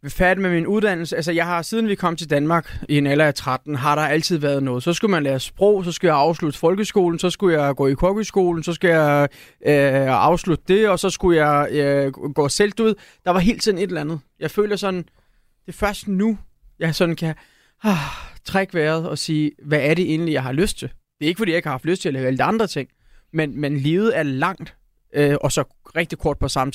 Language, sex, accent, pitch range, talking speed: Danish, male, native, 145-180 Hz, 245 wpm